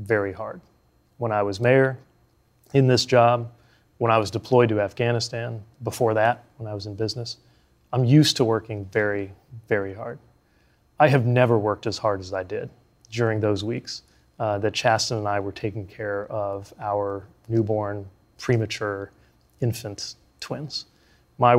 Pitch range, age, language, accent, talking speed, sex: 110-135 Hz, 30-49, English, American, 155 wpm, male